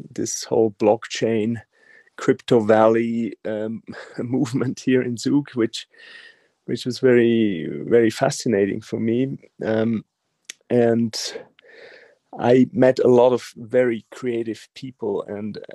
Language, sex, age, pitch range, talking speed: English, male, 40-59, 110-125 Hz, 110 wpm